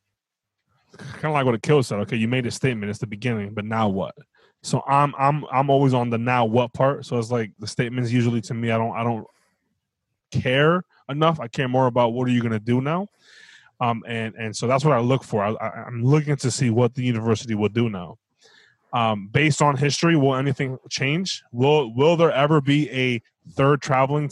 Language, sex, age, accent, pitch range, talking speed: English, male, 20-39, American, 120-155 Hz, 215 wpm